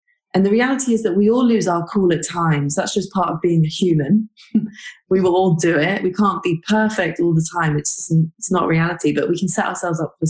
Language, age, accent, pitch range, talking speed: English, 20-39, British, 160-205 Hz, 245 wpm